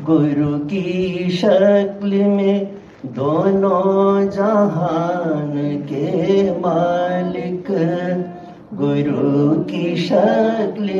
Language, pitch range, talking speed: Hindi, 135-180 Hz, 60 wpm